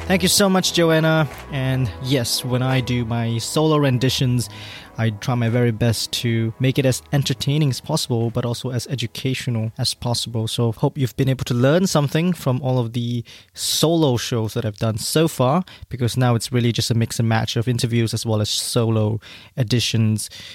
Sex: male